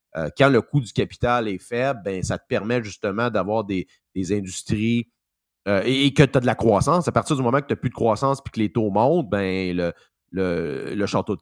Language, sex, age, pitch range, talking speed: French, male, 30-49, 105-135 Hz, 245 wpm